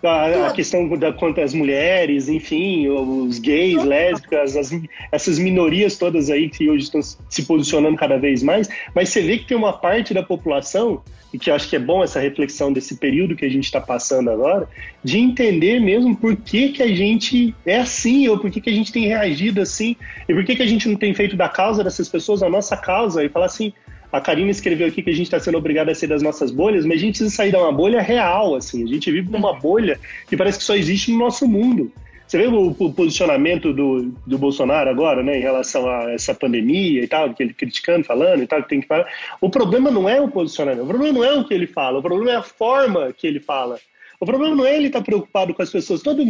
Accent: Brazilian